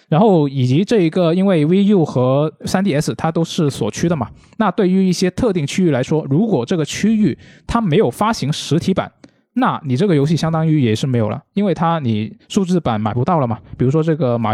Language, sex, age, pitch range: Chinese, male, 20-39, 125-180 Hz